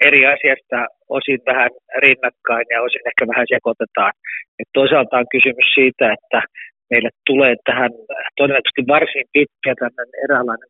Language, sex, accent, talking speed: Finnish, male, native, 130 wpm